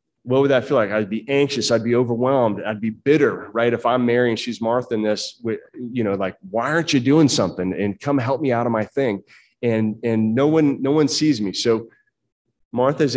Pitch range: 110-150 Hz